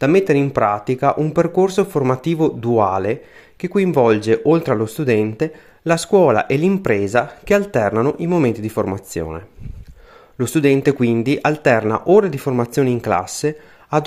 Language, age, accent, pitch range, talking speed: Italian, 30-49, native, 115-160 Hz, 140 wpm